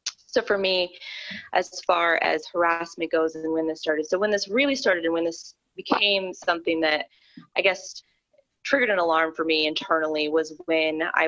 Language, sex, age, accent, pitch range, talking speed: English, female, 20-39, American, 160-200 Hz, 180 wpm